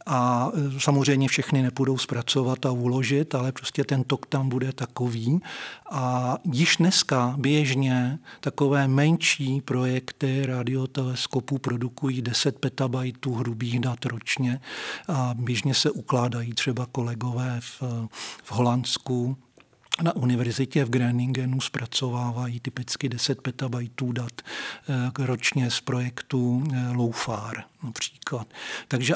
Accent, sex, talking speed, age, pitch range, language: native, male, 105 wpm, 40-59, 125-135 Hz, Czech